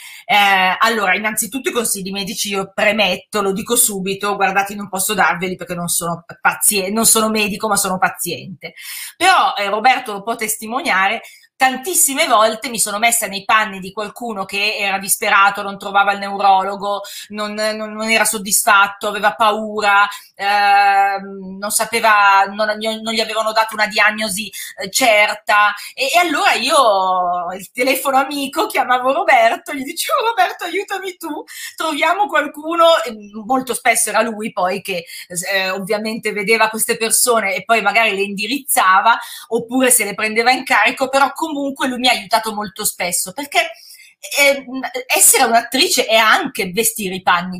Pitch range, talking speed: 195-255 Hz, 155 wpm